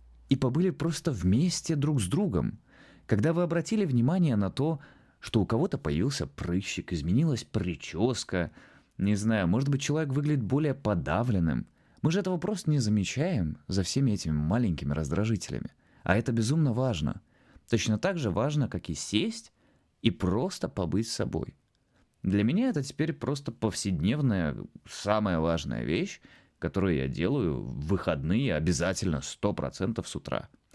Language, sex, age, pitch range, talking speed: Russian, male, 20-39, 90-145 Hz, 140 wpm